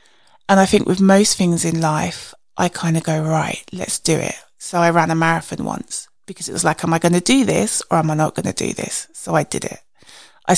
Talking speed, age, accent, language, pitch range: 255 wpm, 20-39, British, English, 165-195 Hz